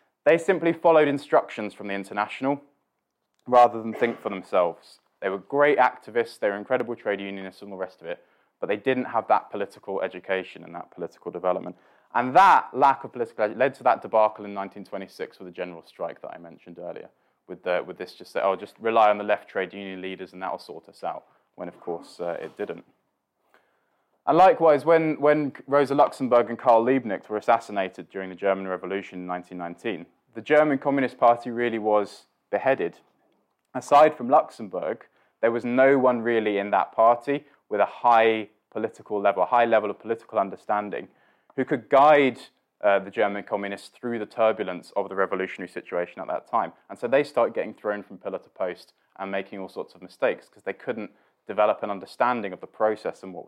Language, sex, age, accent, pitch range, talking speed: English, male, 20-39, British, 95-130 Hz, 195 wpm